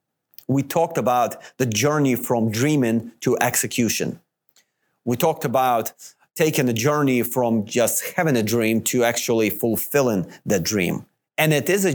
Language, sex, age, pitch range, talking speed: English, male, 40-59, 120-155 Hz, 145 wpm